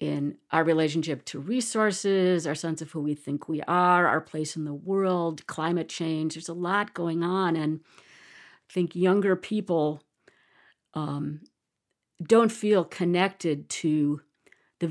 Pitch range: 155-190 Hz